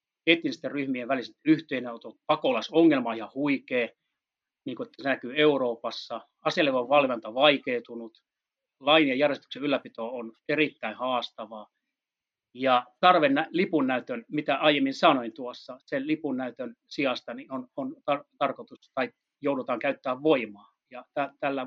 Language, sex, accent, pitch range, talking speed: Finnish, male, native, 120-160 Hz, 125 wpm